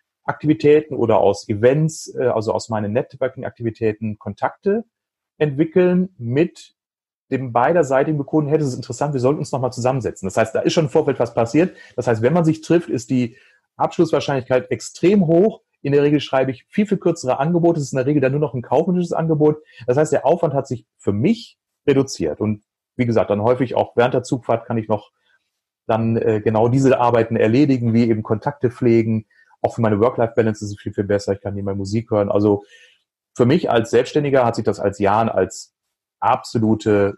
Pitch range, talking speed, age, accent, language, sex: 110-150 Hz, 195 wpm, 30-49, German, German, male